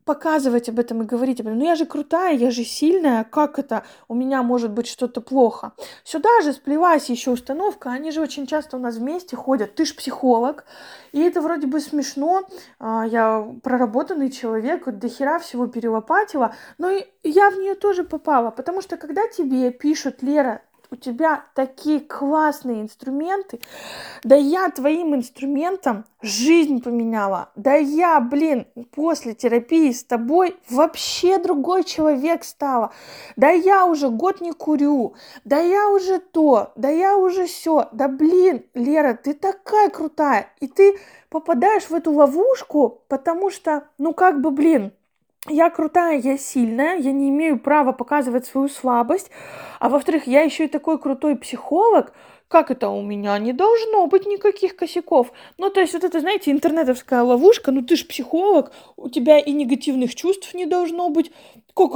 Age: 20-39